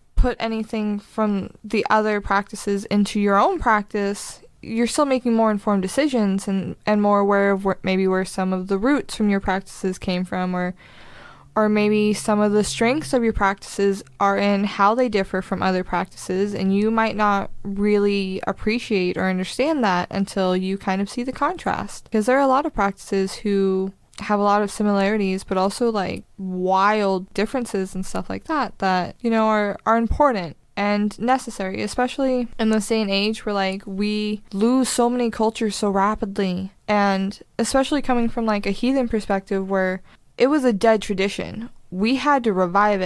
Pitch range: 195-230 Hz